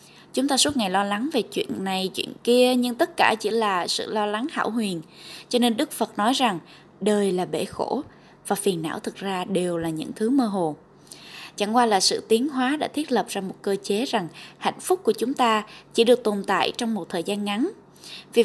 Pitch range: 195-255 Hz